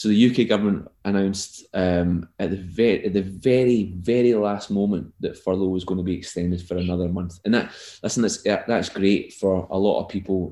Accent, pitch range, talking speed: British, 90-100 Hz, 200 wpm